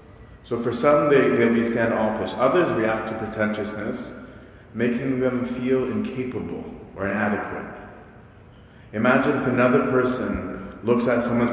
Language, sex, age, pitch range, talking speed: English, male, 30-49, 105-120 Hz, 125 wpm